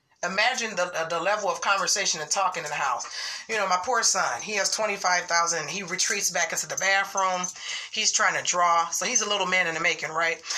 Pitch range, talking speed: 175-215 Hz, 225 wpm